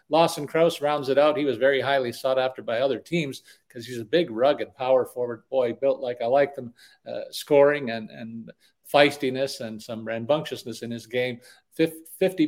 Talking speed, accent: 190 wpm, American